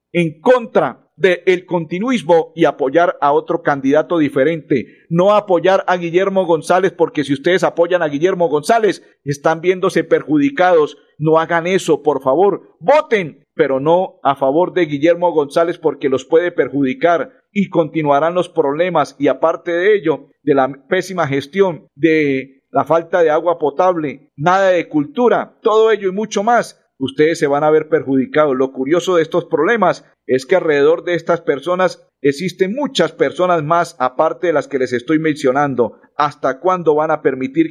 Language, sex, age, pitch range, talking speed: Spanish, male, 50-69, 160-195 Hz, 160 wpm